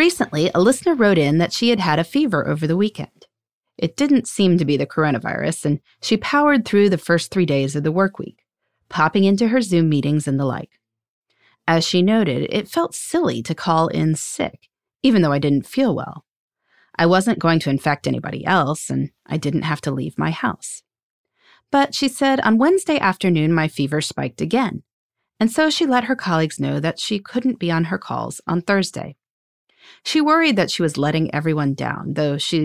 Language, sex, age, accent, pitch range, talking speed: English, female, 30-49, American, 150-235 Hz, 200 wpm